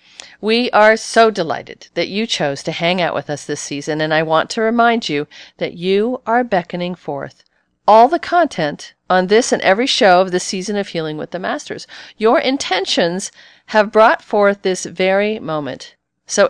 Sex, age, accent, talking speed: female, 50-69, American, 180 wpm